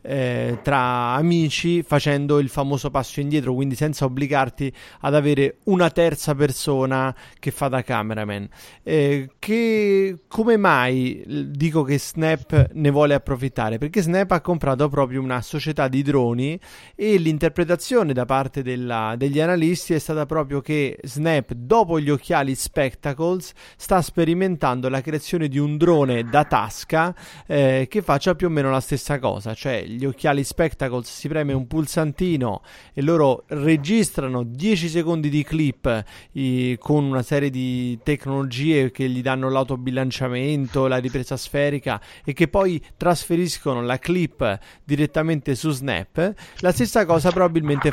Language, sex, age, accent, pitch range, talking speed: Italian, male, 30-49, native, 130-165 Hz, 145 wpm